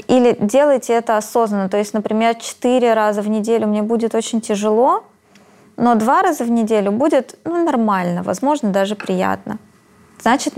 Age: 20-39